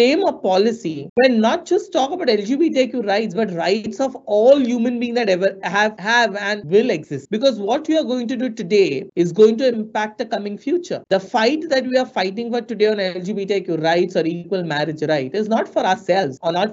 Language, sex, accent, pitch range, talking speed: English, male, Indian, 175-235 Hz, 210 wpm